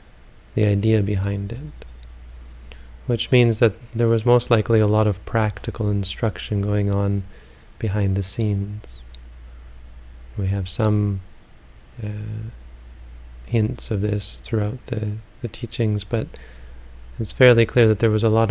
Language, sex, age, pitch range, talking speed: English, male, 30-49, 70-110 Hz, 135 wpm